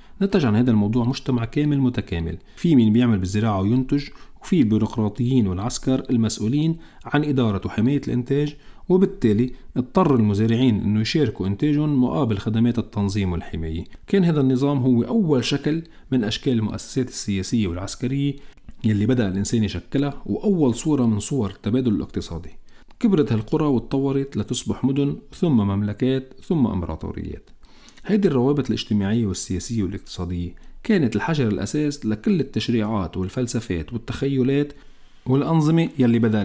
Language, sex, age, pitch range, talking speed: Arabic, male, 40-59, 100-135 Hz, 125 wpm